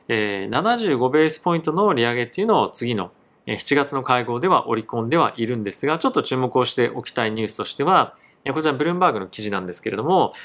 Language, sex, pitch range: Japanese, male, 110-150 Hz